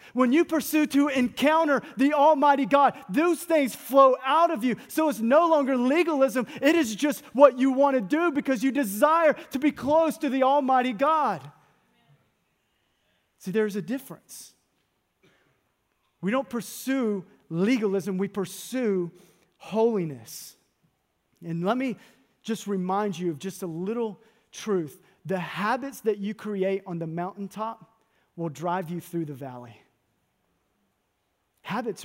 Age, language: 30-49, English